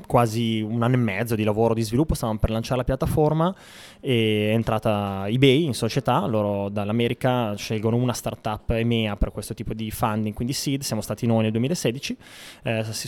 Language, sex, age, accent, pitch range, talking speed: Italian, male, 20-39, native, 105-125 Hz, 190 wpm